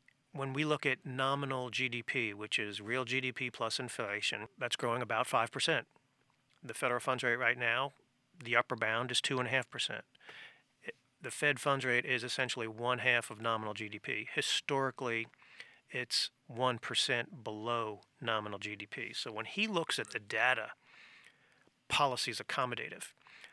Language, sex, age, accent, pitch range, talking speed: English, male, 40-59, American, 115-135 Hz, 135 wpm